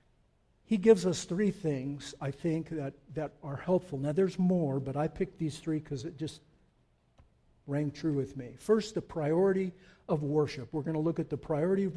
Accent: American